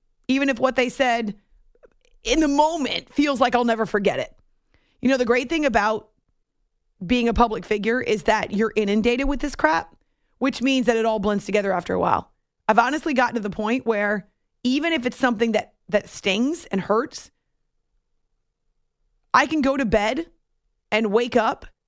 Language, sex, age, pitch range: English, female, 30-49, 205-255 Hz